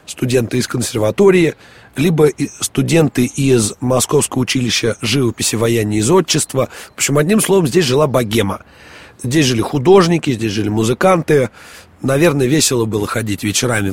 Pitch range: 120-160 Hz